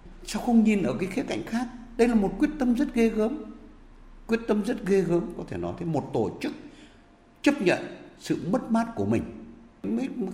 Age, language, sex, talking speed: 60-79, Vietnamese, male, 215 wpm